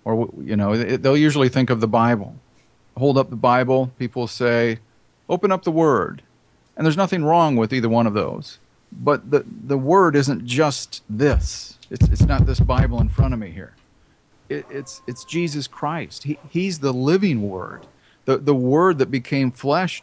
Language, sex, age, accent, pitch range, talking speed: English, male, 40-59, American, 120-155 Hz, 185 wpm